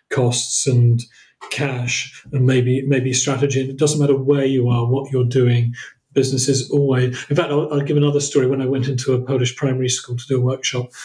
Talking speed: 205 wpm